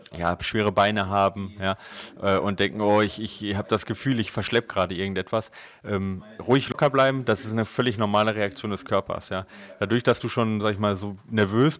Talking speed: 205 wpm